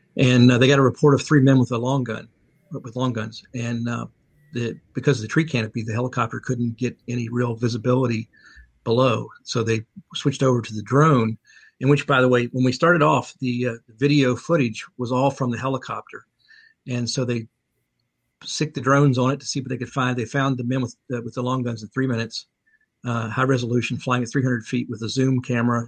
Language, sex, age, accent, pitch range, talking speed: English, male, 50-69, American, 120-135 Hz, 215 wpm